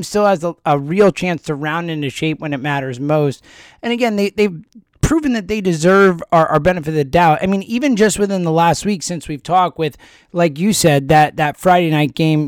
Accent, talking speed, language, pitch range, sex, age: American, 230 wpm, English, 160-225 Hz, male, 20-39